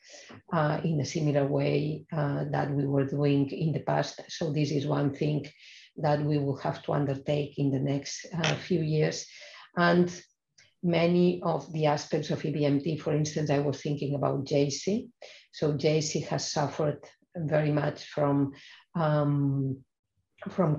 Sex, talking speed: female, 150 wpm